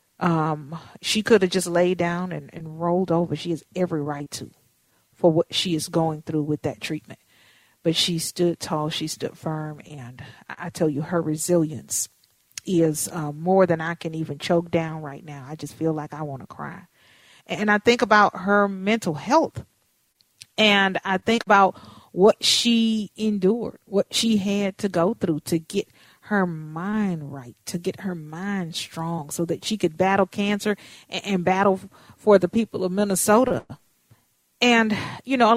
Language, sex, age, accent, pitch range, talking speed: English, female, 40-59, American, 165-205 Hz, 180 wpm